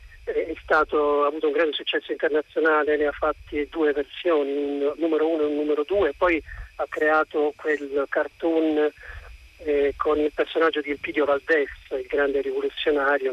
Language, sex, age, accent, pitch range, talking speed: Italian, male, 40-59, native, 145-170 Hz, 160 wpm